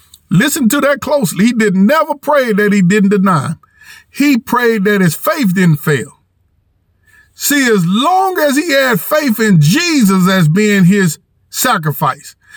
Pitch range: 180-245 Hz